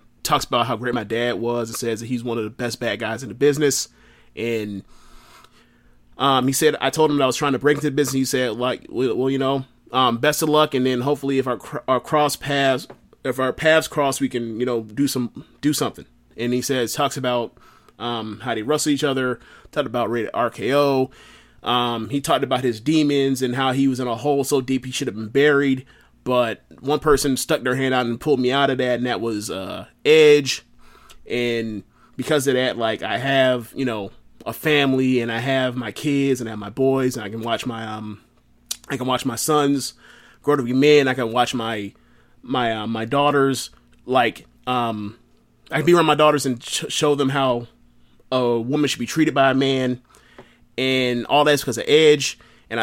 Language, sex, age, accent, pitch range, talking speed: English, male, 30-49, American, 120-140 Hz, 215 wpm